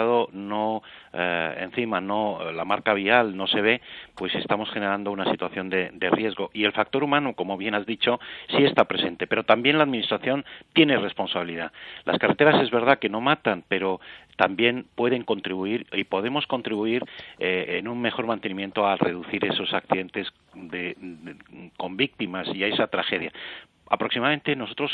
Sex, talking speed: male, 165 wpm